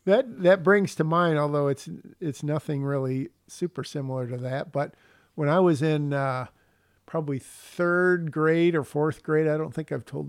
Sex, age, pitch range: male, 50-69, 145-175 Hz